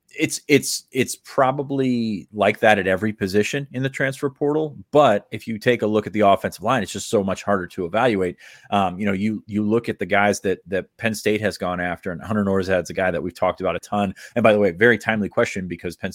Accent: American